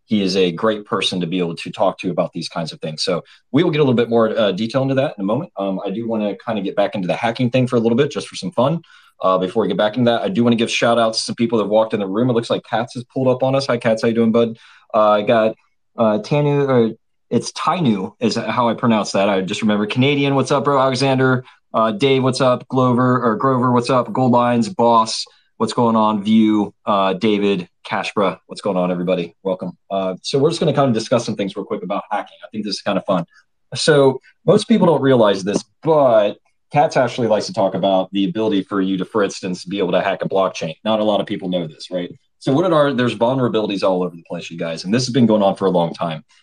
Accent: American